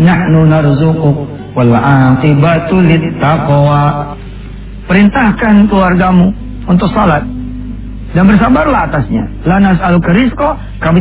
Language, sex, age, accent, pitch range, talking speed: English, male, 40-59, Indonesian, 130-185 Hz, 85 wpm